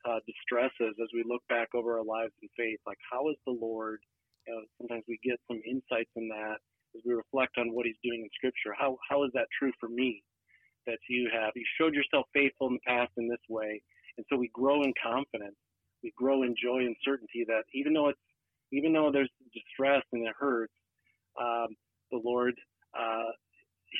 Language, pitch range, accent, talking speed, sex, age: English, 115-135 Hz, American, 205 wpm, male, 40-59